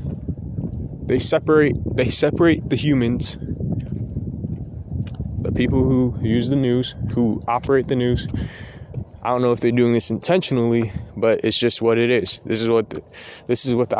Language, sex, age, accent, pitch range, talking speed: English, male, 20-39, American, 115-140 Hz, 165 wpm